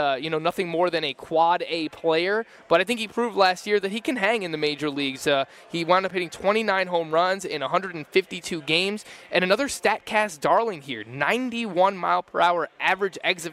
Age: 20-39